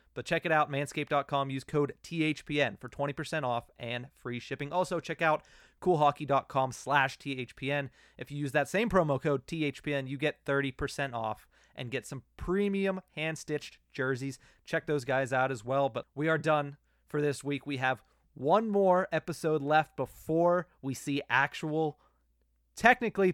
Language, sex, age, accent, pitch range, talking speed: English, male, 30-49, American, 130-155 Hz, 160 wpm